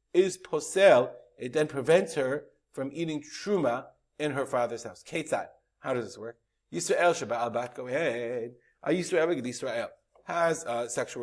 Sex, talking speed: male, 155 wpm